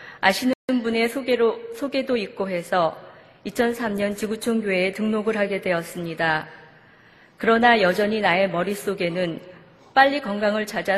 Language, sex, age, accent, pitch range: Korean, female, 40-59, native, 180-235 Hz